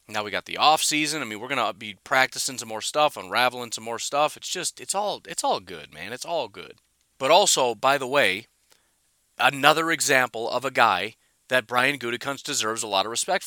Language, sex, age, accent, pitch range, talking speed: English, male, 30-49, American, 115-145 Hz, 210 wpm